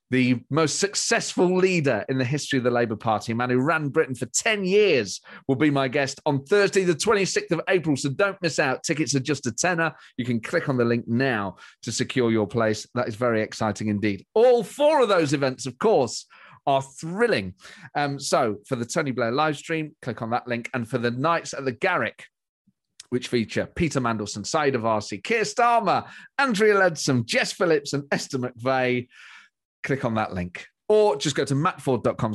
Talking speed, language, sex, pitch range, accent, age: 195 wpm, English, male, 115-165 Hz, British, 40-59